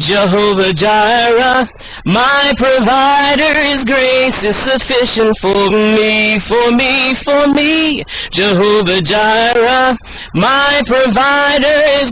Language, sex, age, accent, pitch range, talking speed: English, male, 30-49, American, 215-285 Hz, 90 wpm